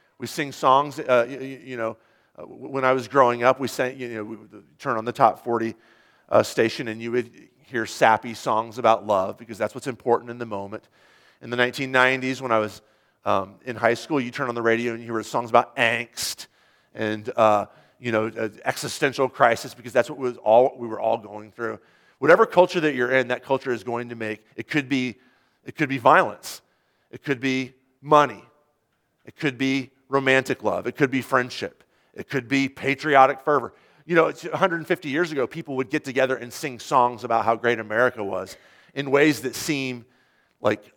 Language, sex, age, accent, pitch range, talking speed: English, male, 40-59, American, 110-135 Hz, 200 wpm